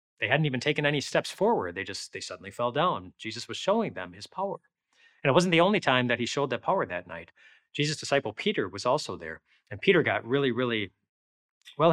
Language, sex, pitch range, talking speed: English, male, 105-150 Hz, 220 wpm